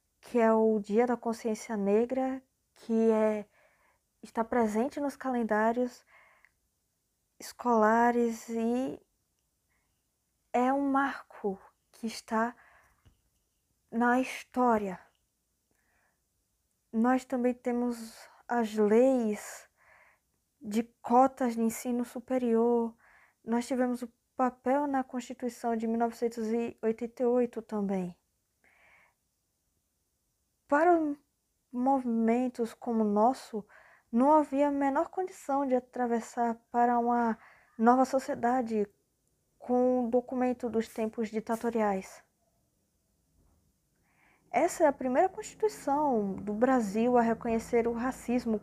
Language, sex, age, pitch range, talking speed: Portuguese, female, 20-39, 225-260 Hz, 90 wpm